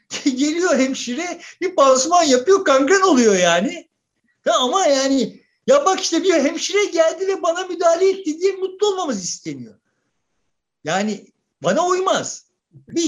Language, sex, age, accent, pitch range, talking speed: Turkish, male, 50-69, native, 235-345 Hz, 135 wpm